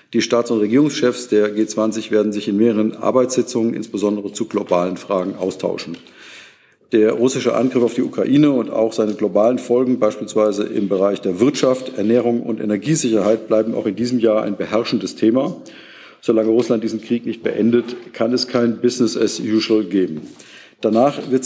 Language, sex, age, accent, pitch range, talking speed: German, male, 50-69, German, 105-120 Hz, 160 wpm